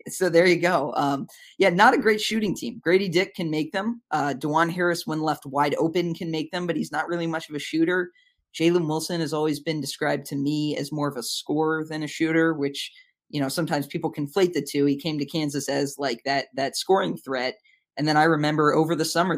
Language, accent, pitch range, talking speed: English, American, 140-175 Hz, 230 wpm